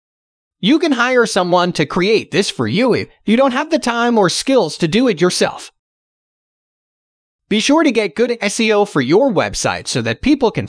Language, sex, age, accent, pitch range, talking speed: English, male, 30-49, American, 155-230 Hz, 190 wpm